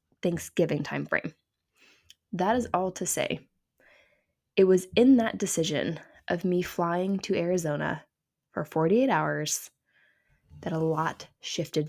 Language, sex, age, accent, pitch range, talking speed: English, female, 10-29, American, 160-205 Hz, 120 wpm